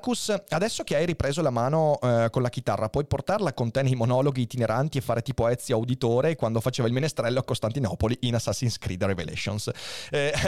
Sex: male